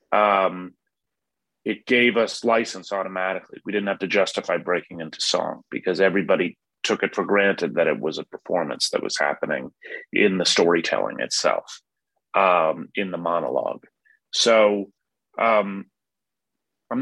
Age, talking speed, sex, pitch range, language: 30-49, 140 wpm, male, 105-145 Hz, English